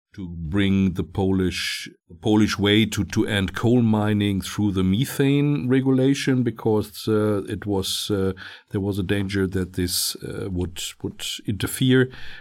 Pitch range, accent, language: 85-105 Hz, German, Polish